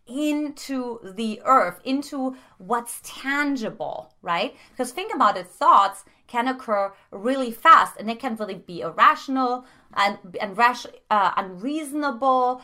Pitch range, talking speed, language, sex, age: 215-280 Hz, 125 wpm, English, female, 30-49